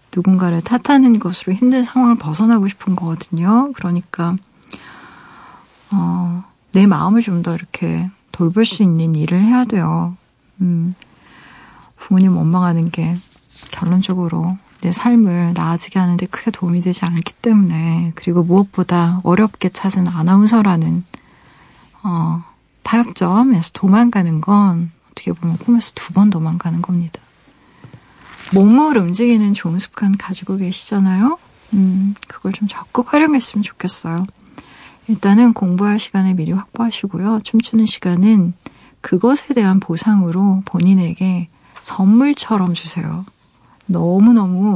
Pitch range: 175-215 Hz